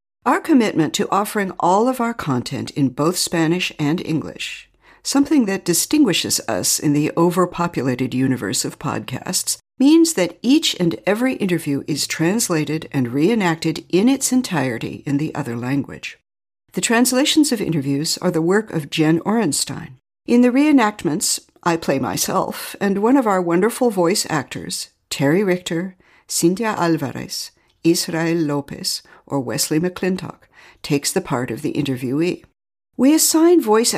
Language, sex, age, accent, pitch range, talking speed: English, female, 60-79, American, 150-210 Hz, 145 wpm